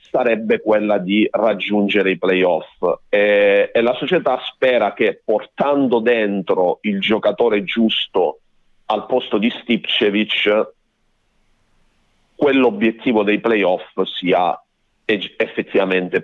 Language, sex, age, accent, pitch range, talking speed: Italian, male, 40-59, native, 95-120 Hz, 95 wpm